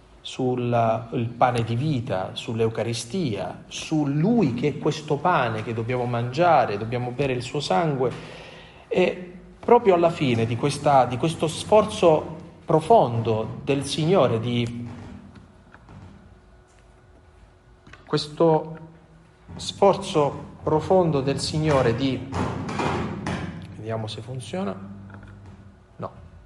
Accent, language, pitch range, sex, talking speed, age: native, Italian, 115-155 Hz, male, 100 wpm, 40-59